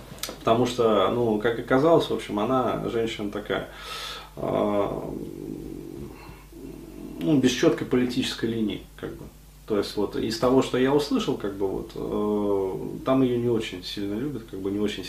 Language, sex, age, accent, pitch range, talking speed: Russian, male, 20-39, native, 105-130 Hz, 150 wpm